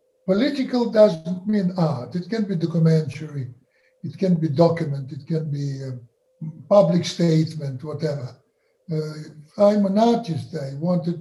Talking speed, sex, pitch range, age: 135 wpm, male, 160-215 Hz, 60-79